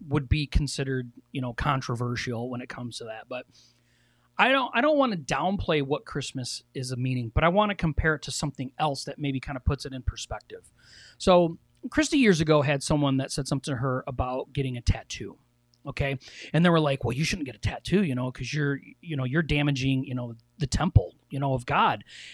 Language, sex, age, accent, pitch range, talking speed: English, male, 30-49, American, 130-170 Hz, 225 wpm